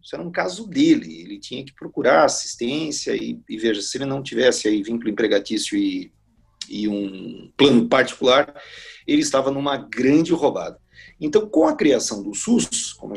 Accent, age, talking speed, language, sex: Brazilian, 40-59, 170 wpm, Portuguese, male